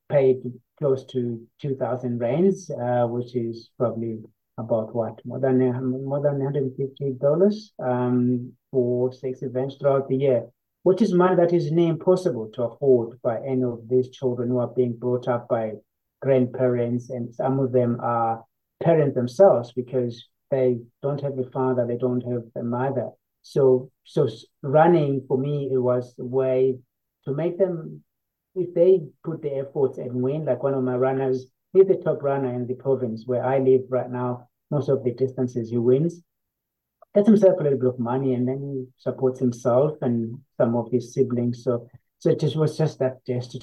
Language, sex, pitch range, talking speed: English, male, 120-140 Hz, 180 wpm